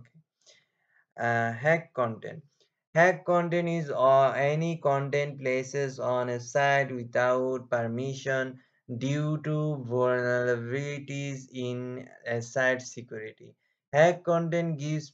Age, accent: 20-39, Indian